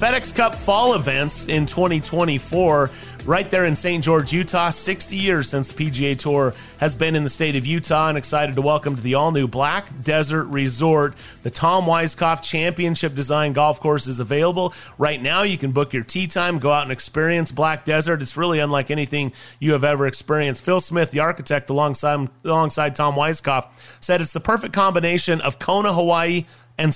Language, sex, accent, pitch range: English, male, American, 145-170 Hz